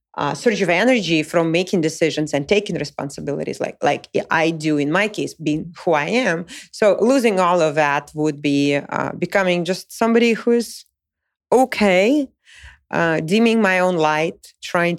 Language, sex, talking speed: English, female, 160 wpm